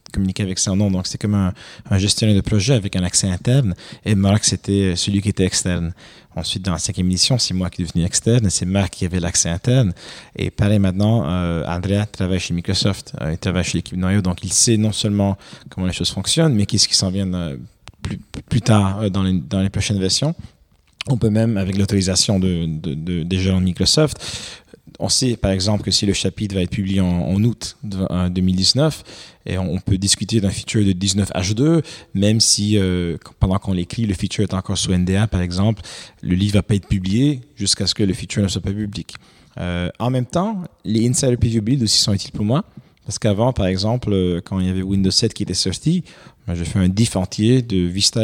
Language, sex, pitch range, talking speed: French, male, 95-110 Hz, 225 wpm